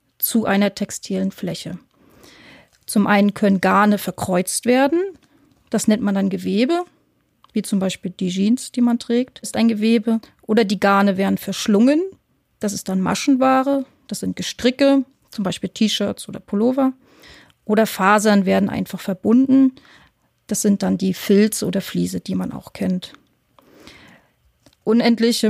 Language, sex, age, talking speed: German, female, 30-49, 140 wpm